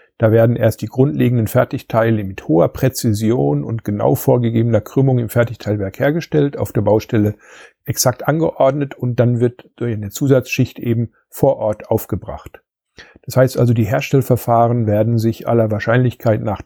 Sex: male